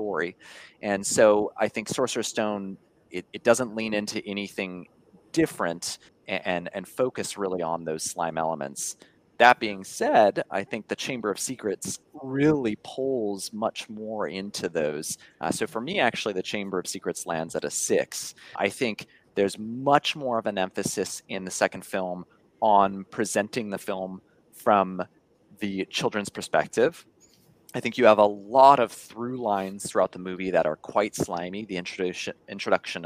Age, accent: 30-49, American